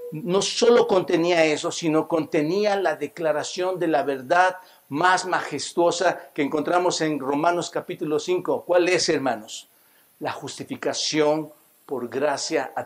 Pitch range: 145-180 Hz